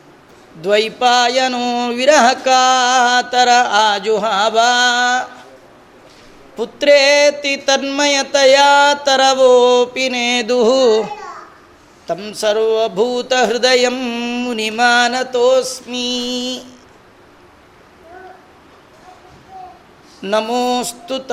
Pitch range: 230-255 Hz